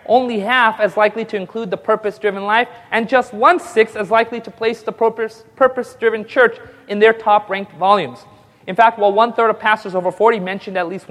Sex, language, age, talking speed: male, English, 30-49, 185 wpm